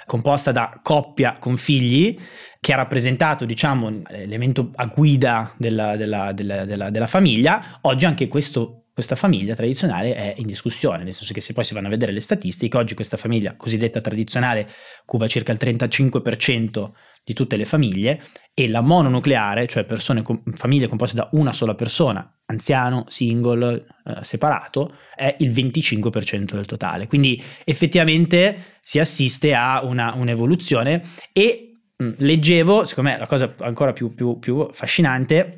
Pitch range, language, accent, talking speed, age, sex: 115-150 Hz, Italian, native, 150 wpm, 20-39, male